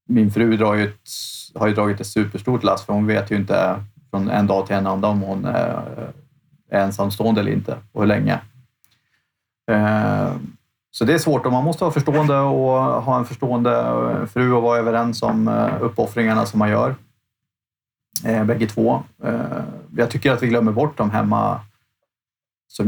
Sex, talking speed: male, 160 wpm